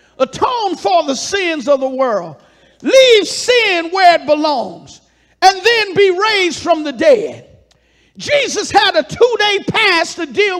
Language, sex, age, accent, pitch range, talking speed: English, male, 50-69, American, 315-410 Hz, 145 wpm